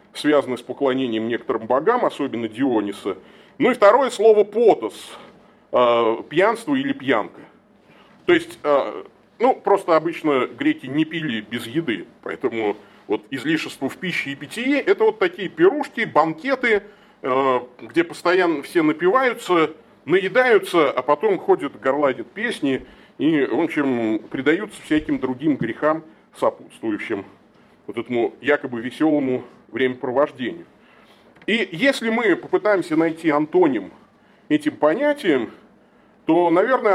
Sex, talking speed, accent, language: male, 110 wpm, native, Russian